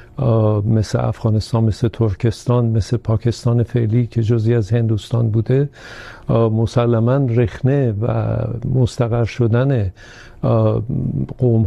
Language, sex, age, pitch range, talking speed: Urdu, male, 50-69, 110-120 Hz, 95 wpm